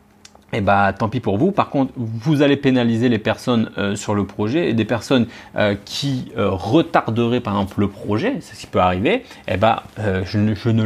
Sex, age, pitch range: male, 30-49, 110-140 Hz